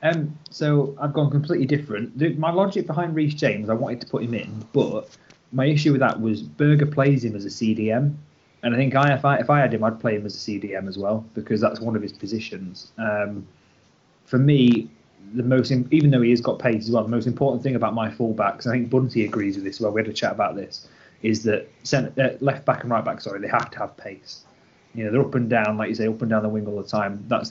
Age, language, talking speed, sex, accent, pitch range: 30-49, English, 265 wpm, male, British, 105-130 Hz